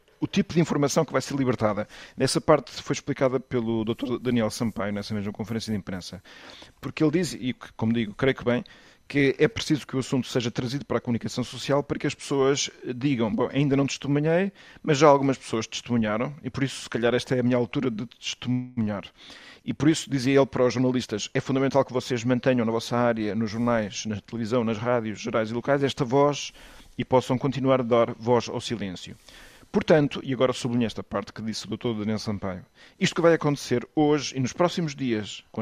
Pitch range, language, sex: 115-140 Hz, Portuguese, male